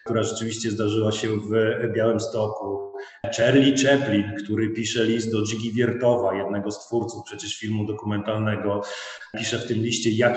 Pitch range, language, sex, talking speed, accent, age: 110-120 Hz, Polish, male, 150 wpm, native, 30-49